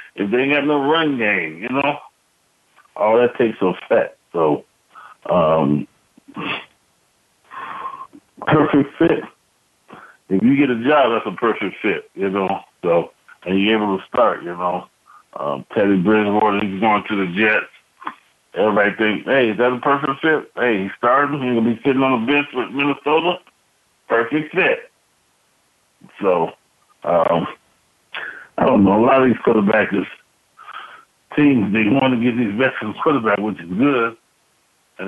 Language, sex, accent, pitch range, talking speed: English, male, American, 105-135 Hz, 155 wpm